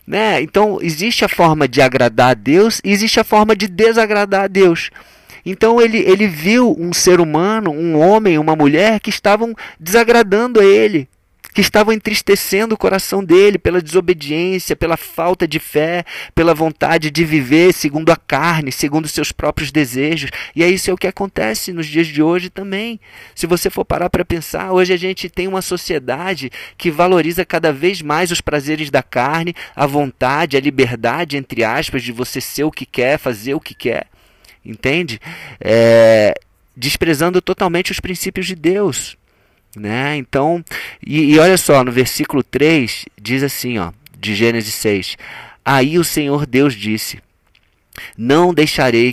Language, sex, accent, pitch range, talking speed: Portuguese, male, Brazilian, 130-180 Hz, 160 wpm